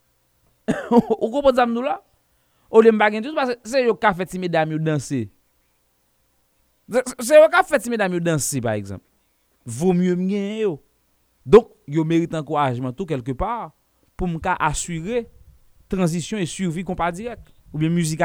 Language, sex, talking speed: English, male, 130 wpm